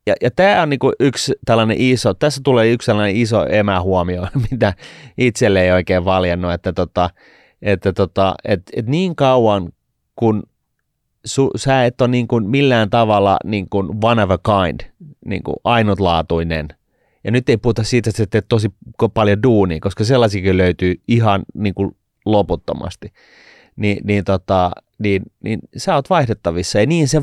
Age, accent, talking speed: 30-49, native, 150 wpm